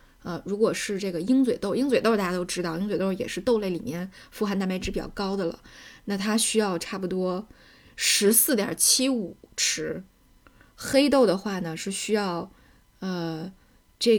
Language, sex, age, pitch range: Chinese, female, 10-29, 175-225 Hz